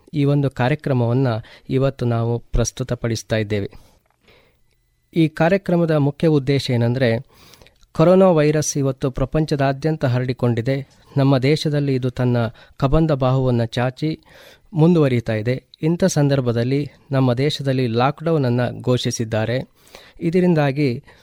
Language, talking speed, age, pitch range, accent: Kannada, 90 wpm, 20-39, 125-155 Hz, native